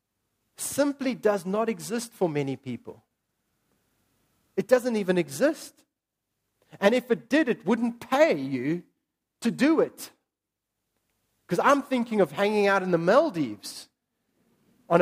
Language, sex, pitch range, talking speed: English, male, 155-240 Hz, 130 wpm